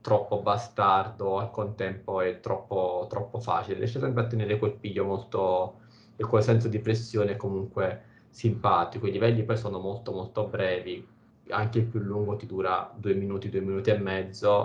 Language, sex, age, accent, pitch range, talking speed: Italian, male, 20-39, native, 95-115 Hz, 170 wpm